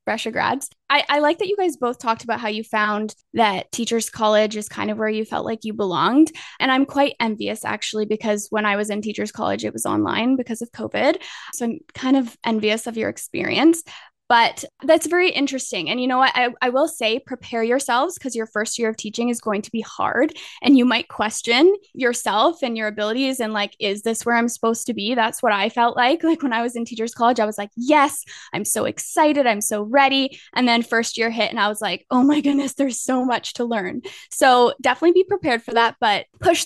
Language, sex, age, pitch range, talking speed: English, female, 20-39, 220-270 Hz, 230 wpm